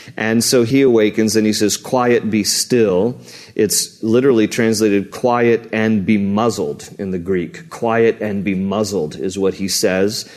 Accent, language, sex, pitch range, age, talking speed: American, English, male, 110-135 Hz, 40-59, 160 wpm